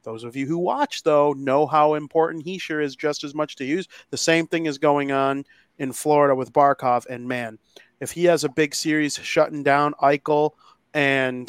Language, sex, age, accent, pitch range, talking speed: English, male, 30-49, American, 130-150 Hz, 205 wpm